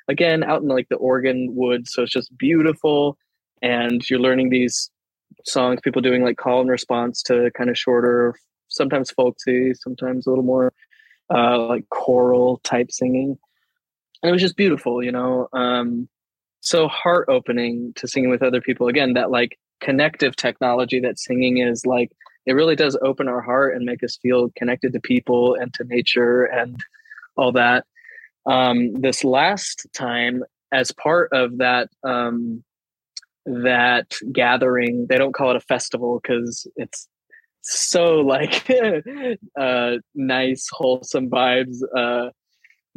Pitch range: 120-130 Hz